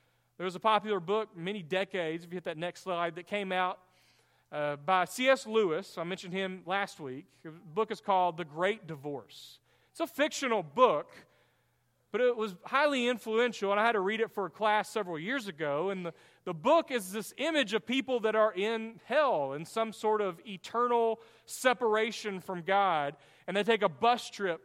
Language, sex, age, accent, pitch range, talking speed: English, male, 40-59, American, 180-225 Hz, 195 wpm